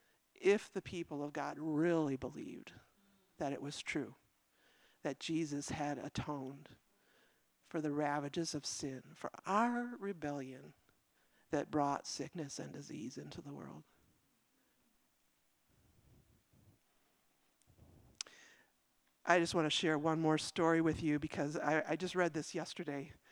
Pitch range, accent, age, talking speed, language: 145-175 Hz, American, 50-69, 125 wpm, English